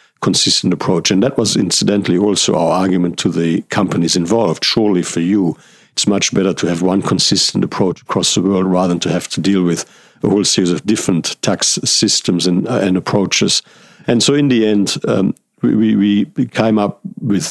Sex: male